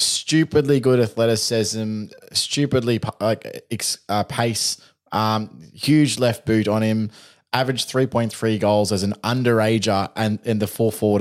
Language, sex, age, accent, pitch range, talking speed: English, male, 20-39, Australian, 105-120 Hz, 130 wpm